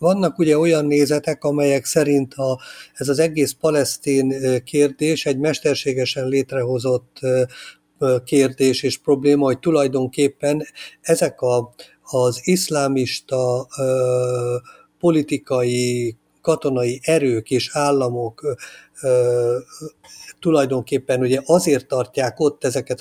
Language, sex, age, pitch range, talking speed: Hungarian, male, 50-69, 125-145 Hz, 85 wpm